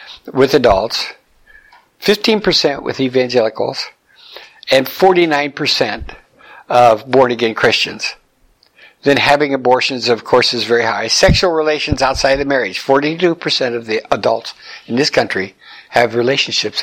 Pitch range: 115-160 Hz